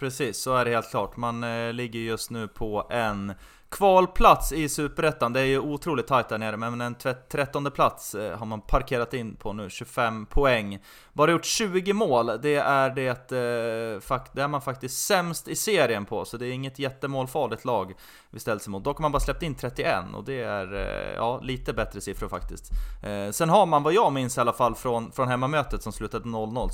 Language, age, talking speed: Swedish, 20-39, 205 wpm